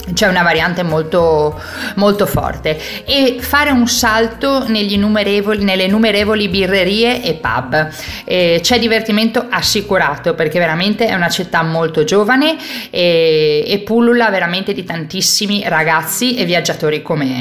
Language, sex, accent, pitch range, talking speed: Italian, female, native, 165-220 Hz, 130 wpm